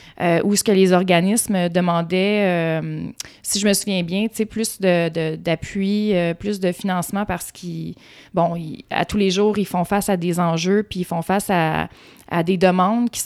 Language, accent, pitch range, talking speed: French, Canadian, 175-205 Hz, 195 wpm